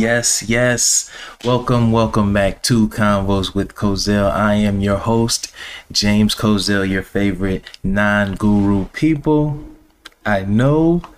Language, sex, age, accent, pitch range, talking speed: English, male, 30-49, American, 100-135 Hz, 115 wpm